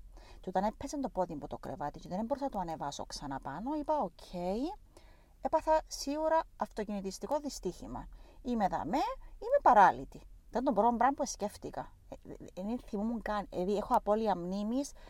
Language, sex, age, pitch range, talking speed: Greek, female, 30-49, 170-255 Hz, 175 wpm